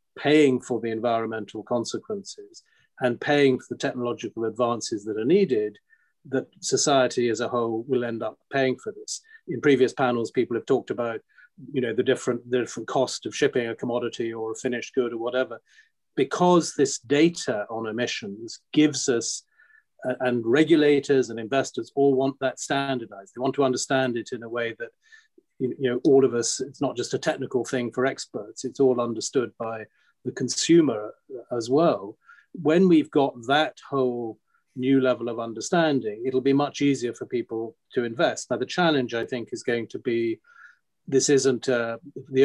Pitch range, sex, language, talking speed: 115-145 Hz, male, English, 175 wpm